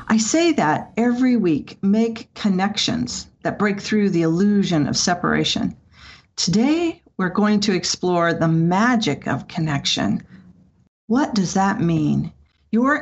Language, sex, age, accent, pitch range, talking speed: English, female, 50-69, American, 170-225 Hz, 130 wpm